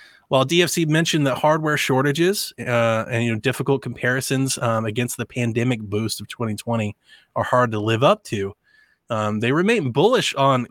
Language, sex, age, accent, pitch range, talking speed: English, male, 20-39, American, 120-145 Hz, 155 wpm